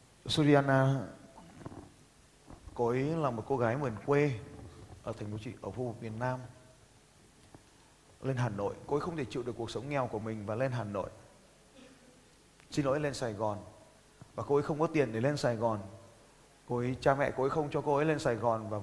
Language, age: Vietnamese, 20-39